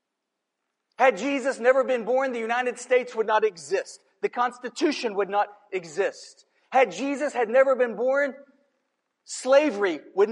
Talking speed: 140 wpm